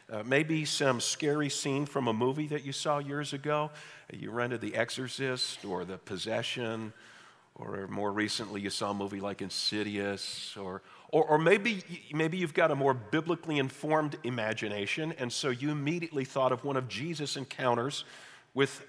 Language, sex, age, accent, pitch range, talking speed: English, male, 50-69, American, 130-180 Hz, 165 wpm